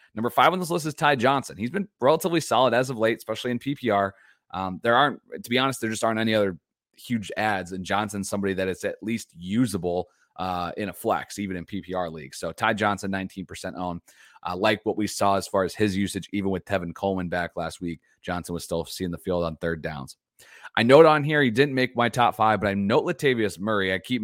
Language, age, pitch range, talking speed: English, 30-49, 90-110 Hz, 235 wpm